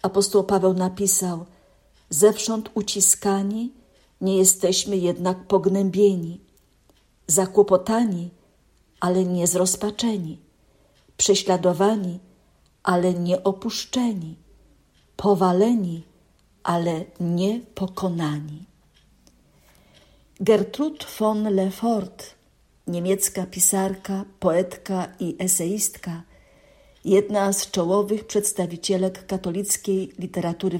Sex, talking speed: female, 70 wpm